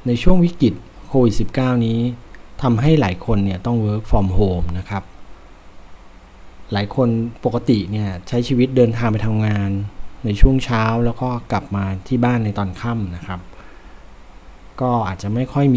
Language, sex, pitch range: Thai, male, 100-125 Hz